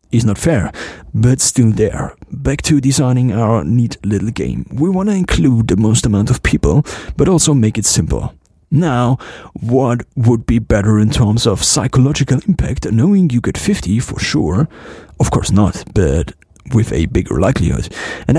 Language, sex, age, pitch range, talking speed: English, male, 40-59, 105-140 Hz, 170 wpm